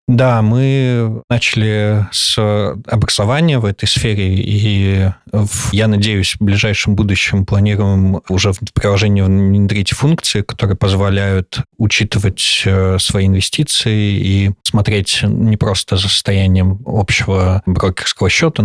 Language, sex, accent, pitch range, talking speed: Russian, male, native, 95-110 Hz, 115 wpm